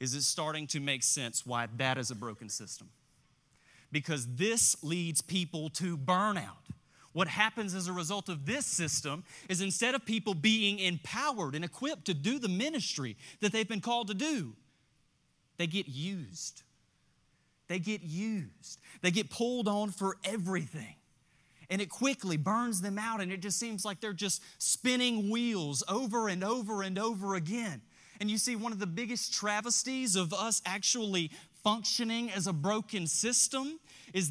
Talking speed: 165 wpm